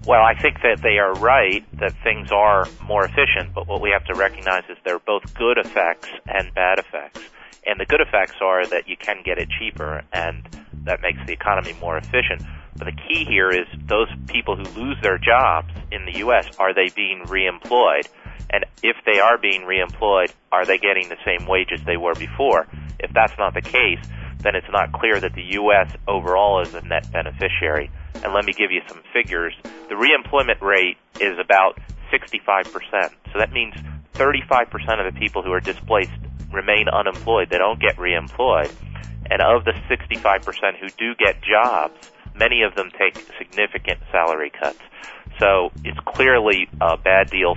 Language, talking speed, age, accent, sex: English, 185 wpm, 30-49, American, male